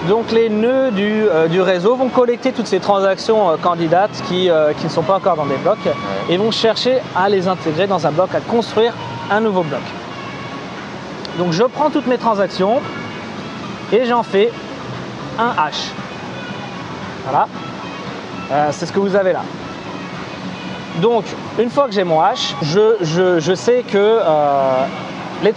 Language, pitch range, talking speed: French, 175-230 Hz, 160 wpm